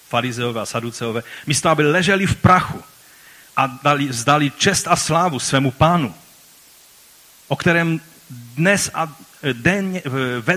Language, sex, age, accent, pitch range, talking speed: Czech, male, 40-59, native, 100-155 Hz, 125 wpm